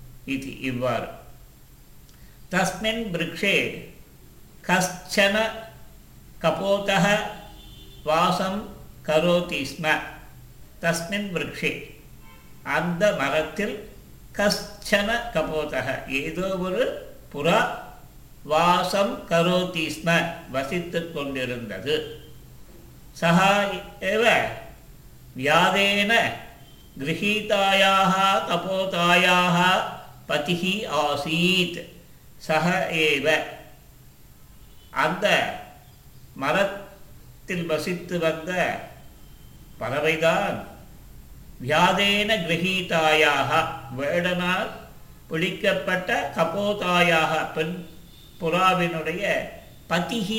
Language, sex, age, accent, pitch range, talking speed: Tamil, male, 50-69, native, 150-195 Hz, 30 wpm